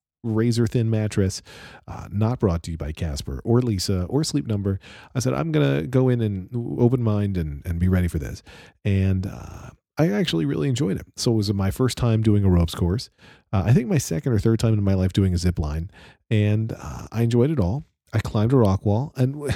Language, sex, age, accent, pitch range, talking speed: English, male, 40-59, American, 90-120 Hz, 230 wpm